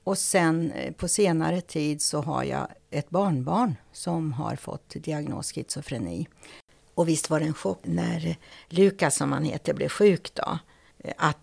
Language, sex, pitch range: Swedish, female, 150-180 Hz